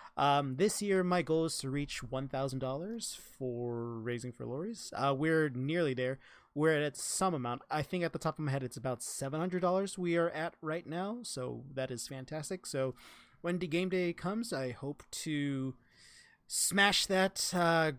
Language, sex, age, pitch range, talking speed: English, male, 20-39, 130-175 Hz, 175 wpm